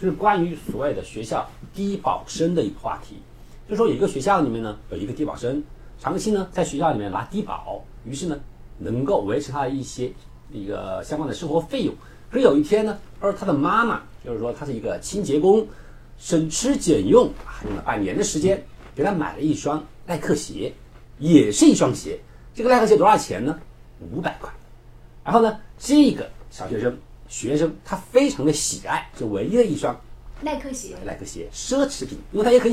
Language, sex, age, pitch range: Chinese, male, 60-79, 145-230 Hz